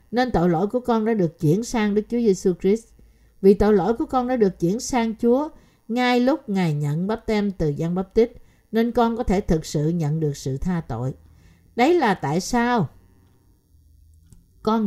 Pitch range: 145-225 Hz